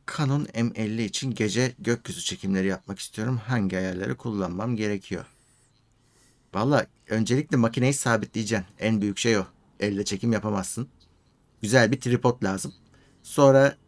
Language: Turkish